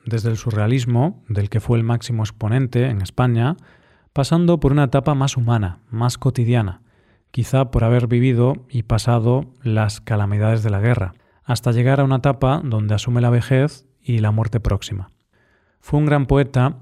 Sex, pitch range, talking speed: male, 110-135 Hz, 170 wpm